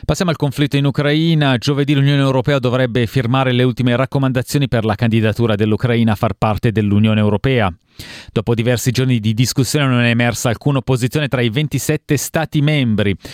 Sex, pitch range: male, 110-145 Hz